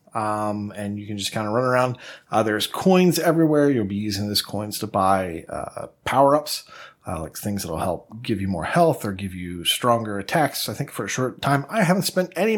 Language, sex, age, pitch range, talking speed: English, male, 30-49, 110-145 Hz, 230 wpm